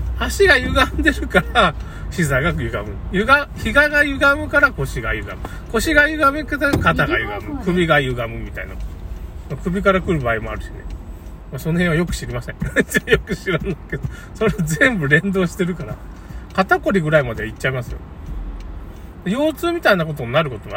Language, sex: Japanese, male